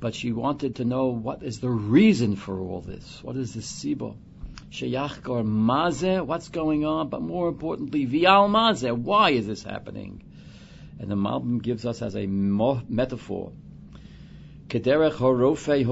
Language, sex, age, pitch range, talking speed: English, male, 60-79, 105-145 Hz, 130 wpm